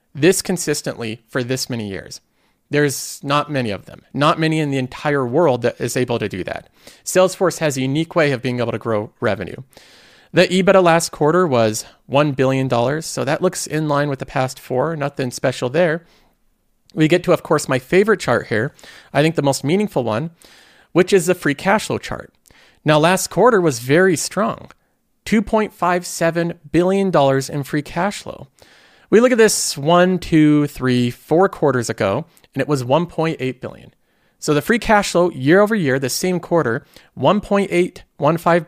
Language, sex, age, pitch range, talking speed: English, male, 40-59, 130-180 Hz, 175 wpm